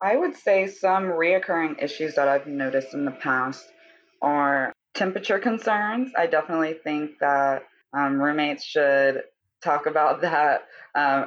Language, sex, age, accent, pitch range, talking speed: English, female, 20-39, American, 135-155 Hz, 140 wpm